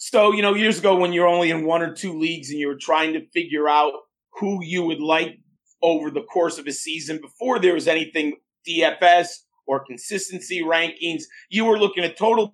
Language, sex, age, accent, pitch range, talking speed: English, male, 40-59, American, 160-200 Hz, 205 wpm